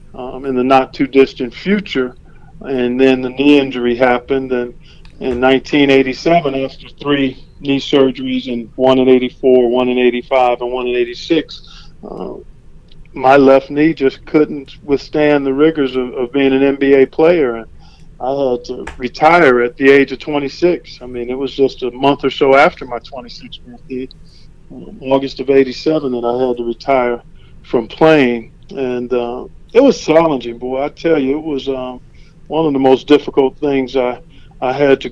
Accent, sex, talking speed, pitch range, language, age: American, male, 170 wpm, 125-155 Hz, English, 40-59